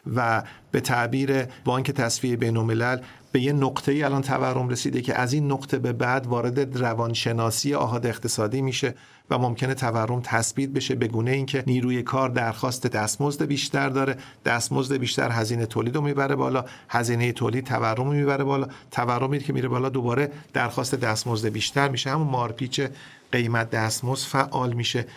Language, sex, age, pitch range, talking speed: Persian, male, 40-59, 120-145 Hz, 160 wpm